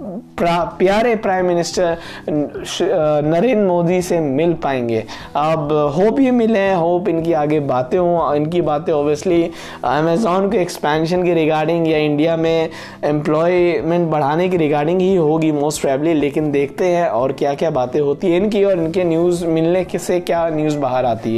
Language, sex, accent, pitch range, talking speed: Hindi, male, native, 160-195 Hz, 160 wpm